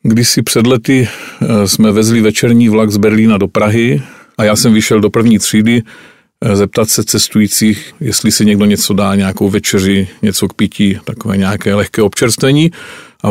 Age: 50-69